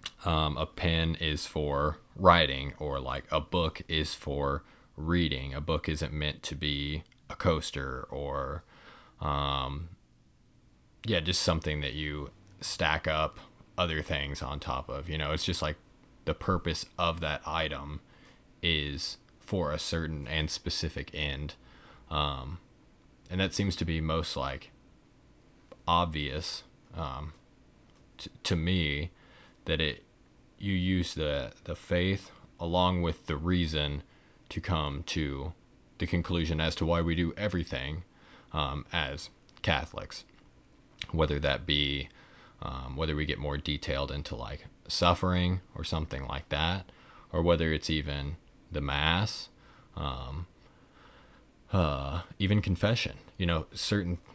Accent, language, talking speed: American, English, 130 wpm